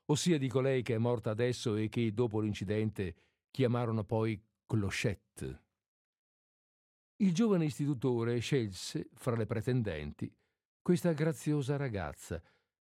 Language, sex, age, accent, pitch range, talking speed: Italian, male, 50-69, native, 105-145 Hz, 110 wpm